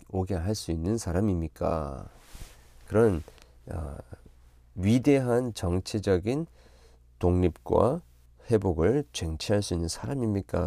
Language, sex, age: Korean, male, 40-59